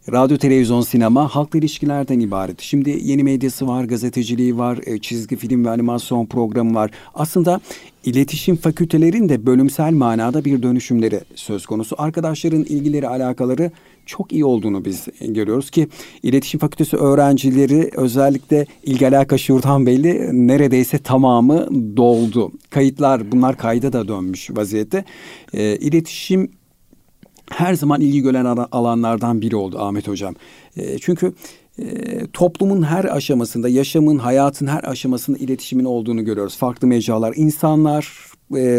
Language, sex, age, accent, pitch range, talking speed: Turkish, male, 50-69, native, 120-150 Hz, 125 wpm